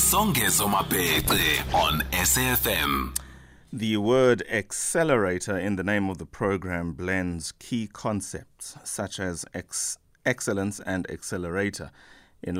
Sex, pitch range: male, 85-100 Hz